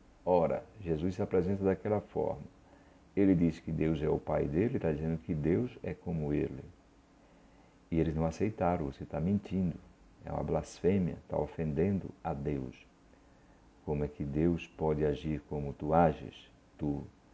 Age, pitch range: 60-79, 80-95 Hz